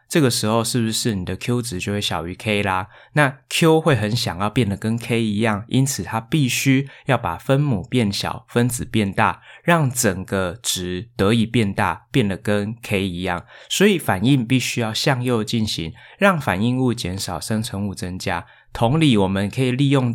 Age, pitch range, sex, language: 20-39, 100-130 Hz, male, Chinese